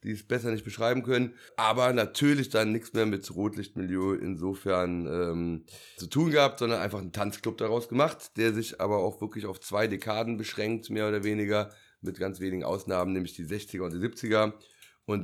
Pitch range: 90-105 Hz